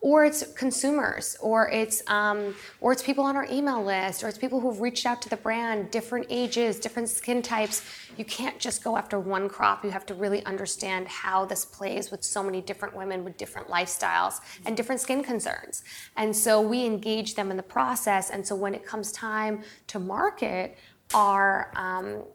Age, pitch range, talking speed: 20-39, 190-225 Hz, 195 wpm